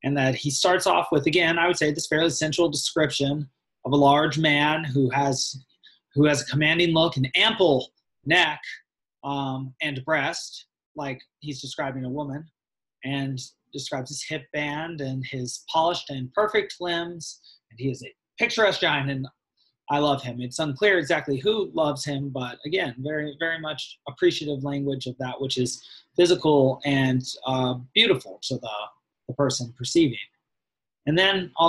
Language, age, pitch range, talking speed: English, 20-39, 135-160 Hz, 160 wpm